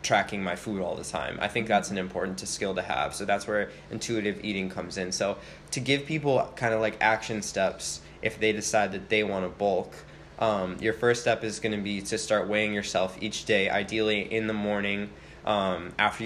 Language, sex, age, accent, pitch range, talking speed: English, male, 20-39, American, 100-115 Hz, 215 wpm